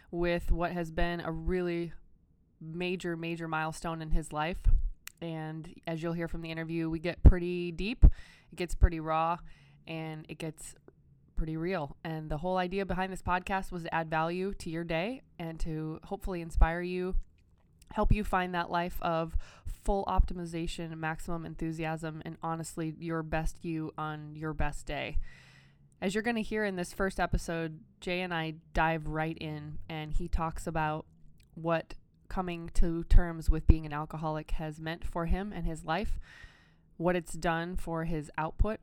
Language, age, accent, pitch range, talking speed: English, 20-39, American, 155-180 Hz, 170 wpm